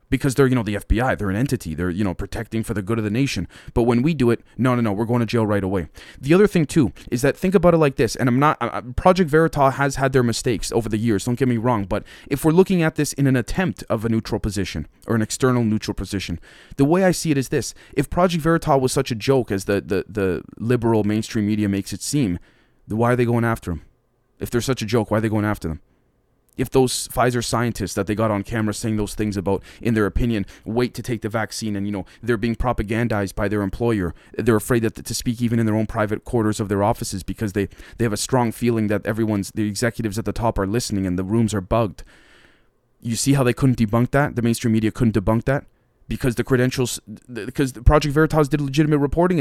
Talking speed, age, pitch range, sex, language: 250 wpm, 20-39, 105-130 Hz, male, English